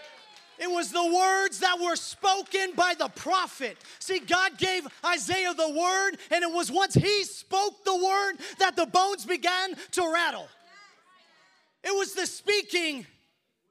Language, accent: English, American